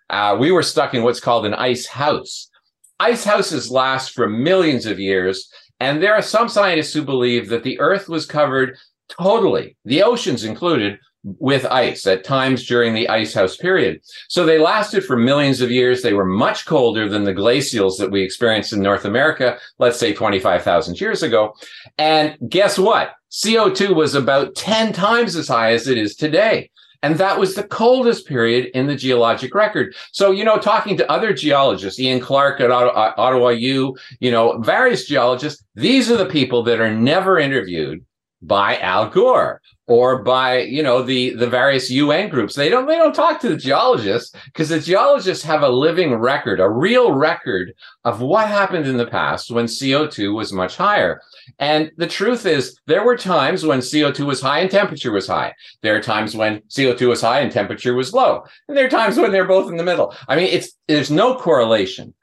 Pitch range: 120-180 Hz